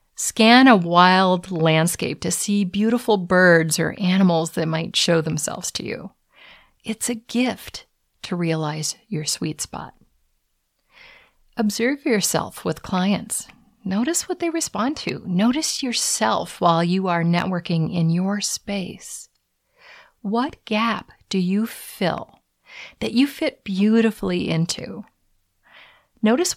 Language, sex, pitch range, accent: English, female, 165-230 Hz, American